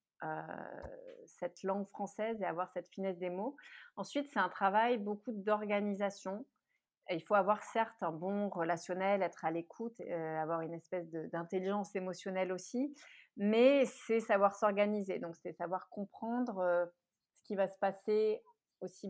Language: French